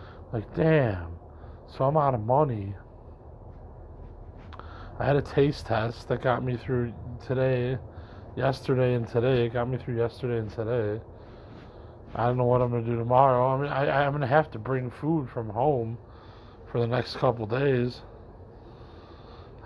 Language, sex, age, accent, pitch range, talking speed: English, male, 20-39, American, 115-135 Hz, 160 wpm